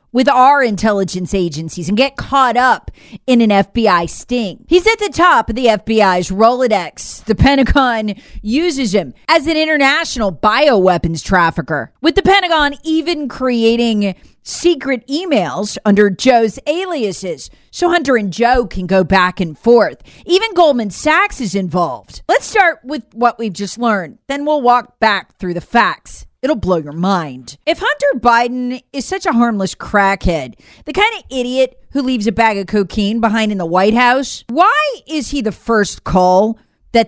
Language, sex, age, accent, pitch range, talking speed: English, female, 40-59, American, 195-280 Hz, 165 wpm